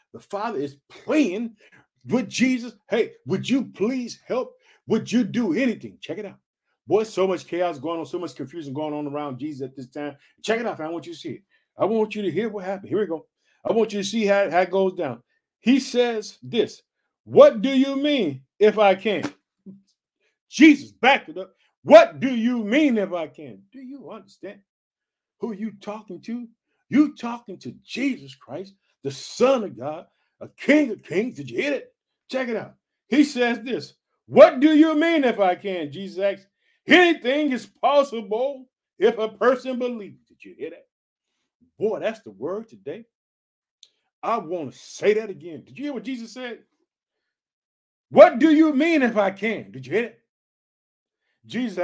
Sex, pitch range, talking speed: male, 195-285 Hz, 190 wpm